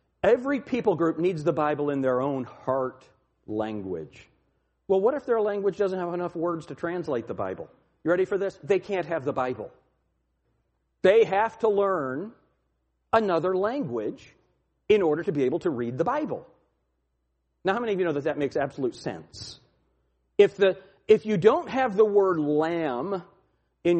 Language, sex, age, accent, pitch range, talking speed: English, male, 40-59, American, 145-225 Hz, 170 wpm